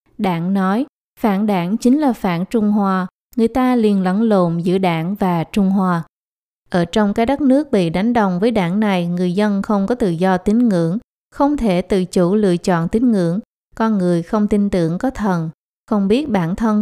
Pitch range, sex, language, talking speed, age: 180-225 Hz, female, Vietnamese, 205 wpm, 20-39